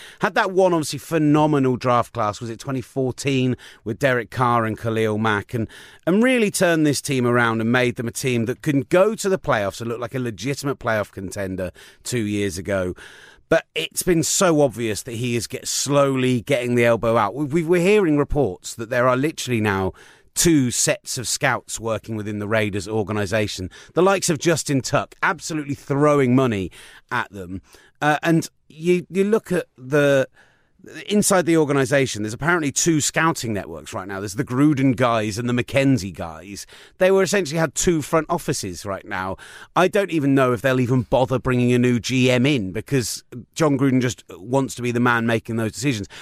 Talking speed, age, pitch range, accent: 190 wpm, 30-49, 115-155 Hz, British